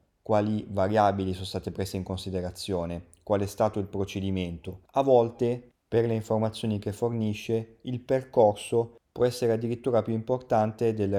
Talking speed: 145 wpm